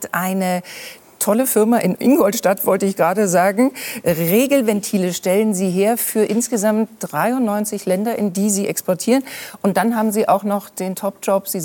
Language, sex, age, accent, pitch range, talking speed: German, female, 40-59, German, 185-230 Hz, 155 wpm